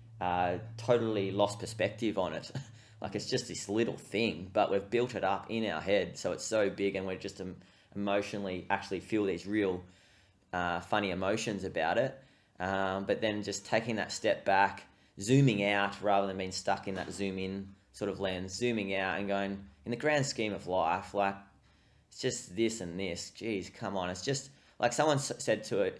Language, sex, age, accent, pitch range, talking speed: English, male, 20-39, Australian, 95-115 Hz, 190 wpm